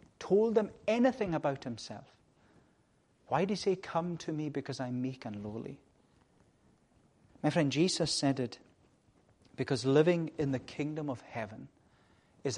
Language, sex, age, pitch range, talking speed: English, male, 40-59, 120-155 Hz, 145 wpm